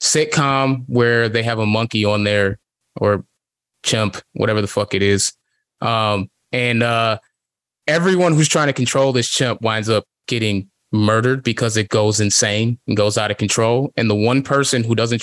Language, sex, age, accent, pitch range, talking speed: English, male, 20-39, American, 110-135 Hz, 175 wpm